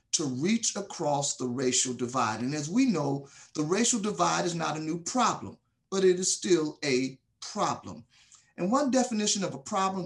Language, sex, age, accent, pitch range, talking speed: English, male, 40-59, American, 145-205 Hz, 180 wpm